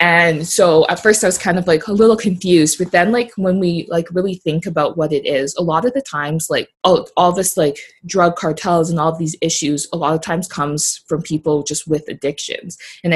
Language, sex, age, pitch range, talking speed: English, female, 20-39, 150-185 Hz, 235 wpm